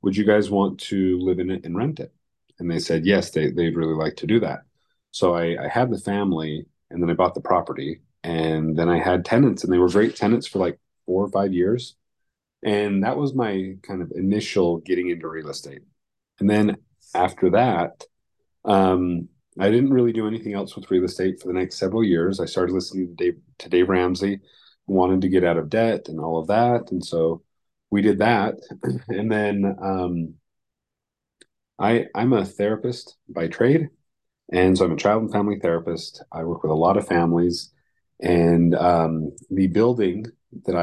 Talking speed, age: 195 wpm, 30-49